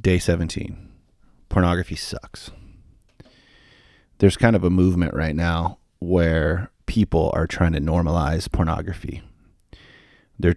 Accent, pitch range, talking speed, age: American, 85-95 Hz, 110 wpm, 30-49